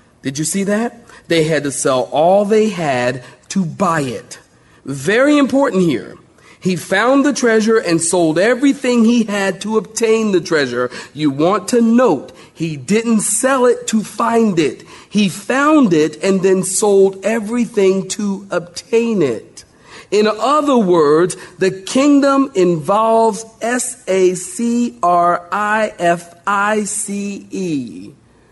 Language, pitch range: English, 165-230 Hz